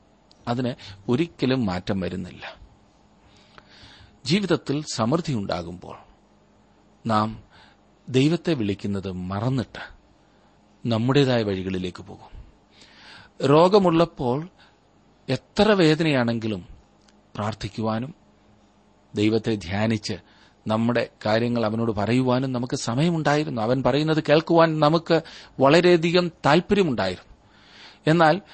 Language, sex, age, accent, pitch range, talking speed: Malayalam, male, 40-59, native, 100-135 Hz, 65 wpm